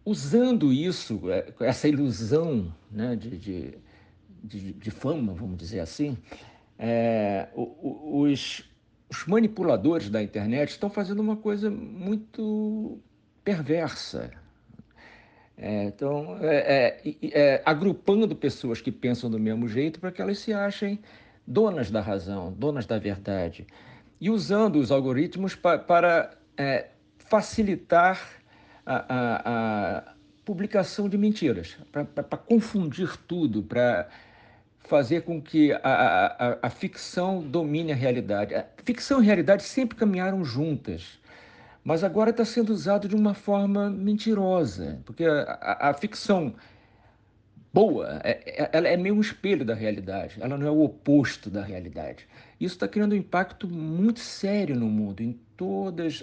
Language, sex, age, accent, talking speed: Portuguese, male, 60-79, Brazilian, 125 wpm